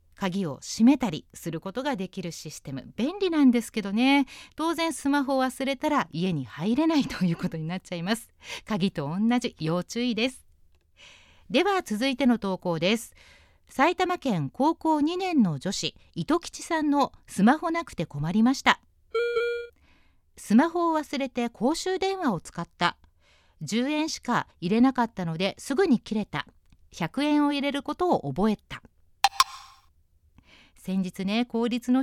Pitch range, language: 180-280 Hz, Japanese